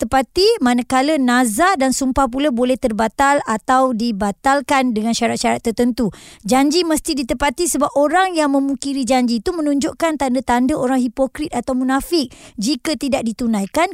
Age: 20-39